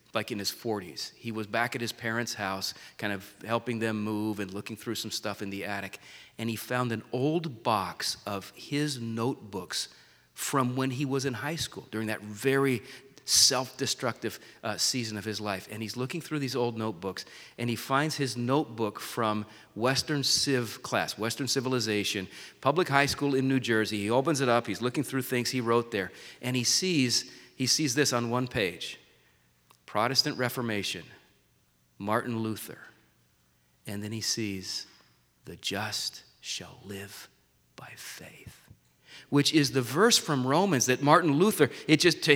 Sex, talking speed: male, 165 wpm